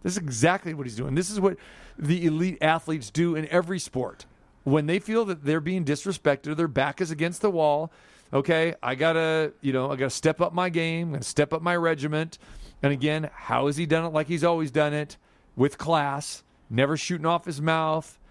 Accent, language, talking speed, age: American, English, 215 wpm, 40-59